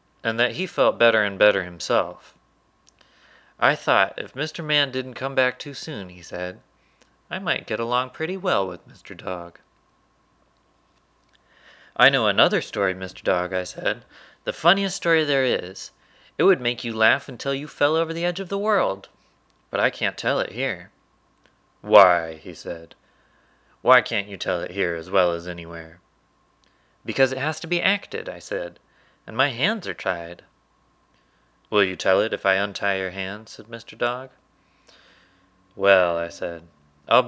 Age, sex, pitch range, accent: 30-49, male, 90-130 Hz, American